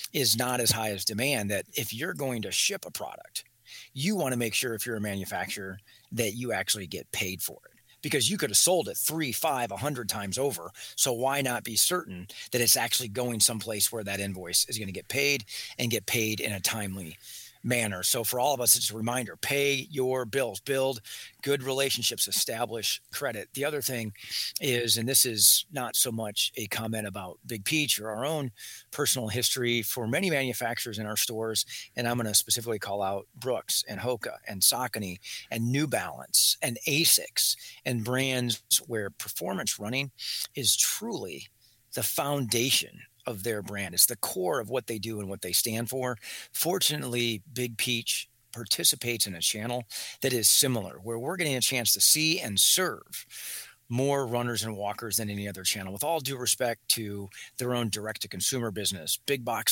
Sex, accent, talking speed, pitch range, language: male, American, 190 wpm, 105-130 Hz, English